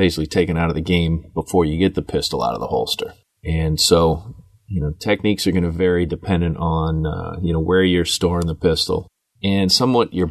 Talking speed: 215 wpm